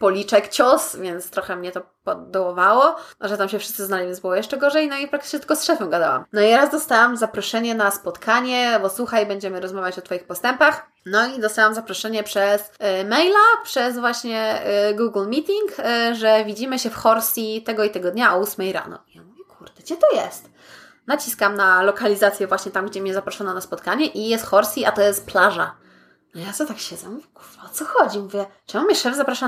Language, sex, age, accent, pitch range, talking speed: Polish, female, 20-39, native, 200-255 Hz, 195 wpm